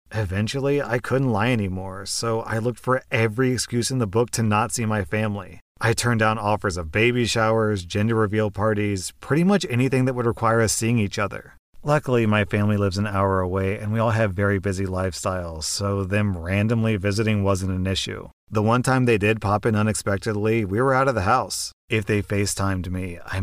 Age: 30-49